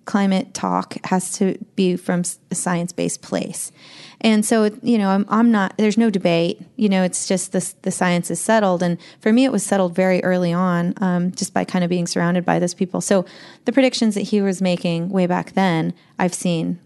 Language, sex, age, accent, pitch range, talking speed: English, female, 30-49, American, 175-200 Hz, 205 wpm